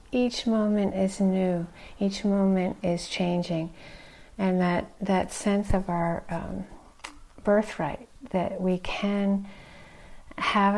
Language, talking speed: English, 105 wpm